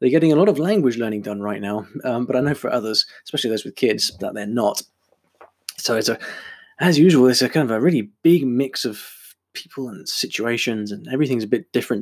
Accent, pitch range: British, 110-155 Hz